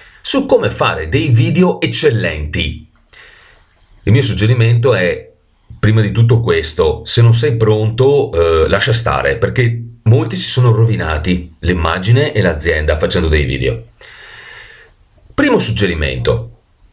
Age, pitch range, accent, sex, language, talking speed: 40-59, 90-130 Hz, native, male, Italian, 120 wpm